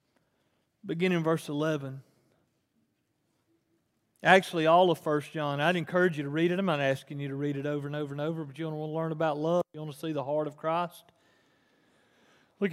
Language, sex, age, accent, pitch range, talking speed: English, male, 40-59, American, 150-180 Hz, 205 wpm